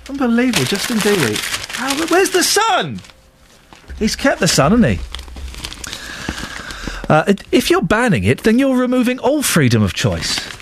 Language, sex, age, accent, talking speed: English, male, 40-59, British, 140 wpm